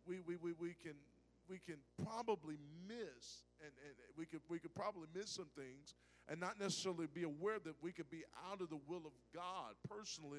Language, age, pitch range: English, 50-69, 135-180 Hz